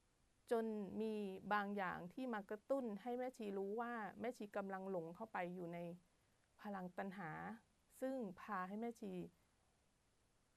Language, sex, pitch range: Thai, female, 180-235 Hz